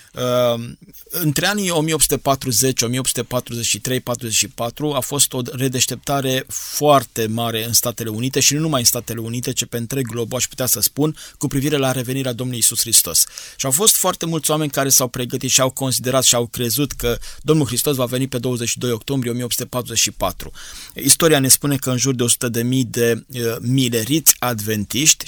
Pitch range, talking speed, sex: 115-135 Hz, 170 wpm, male